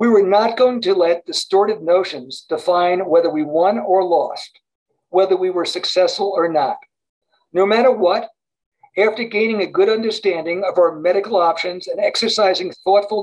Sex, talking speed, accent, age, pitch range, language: male, 160 wpm, American, 60-79, 165-220 Hz, English